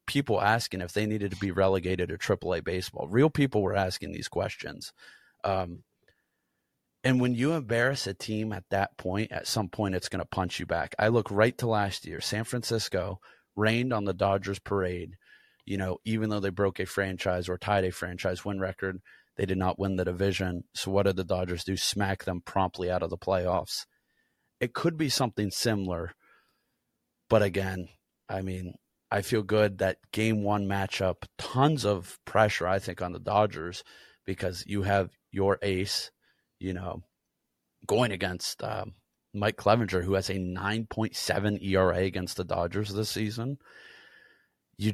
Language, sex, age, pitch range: English, male, 30-49, 95-110 Hz